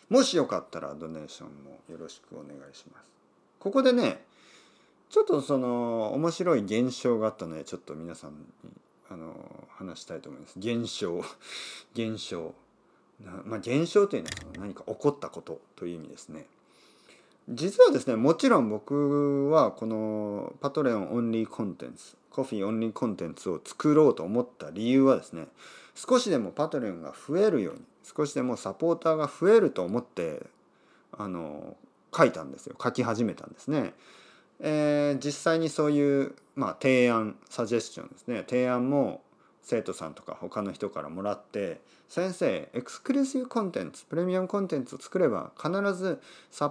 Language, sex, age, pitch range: Japanese, male, 40-59, 125-195 Hz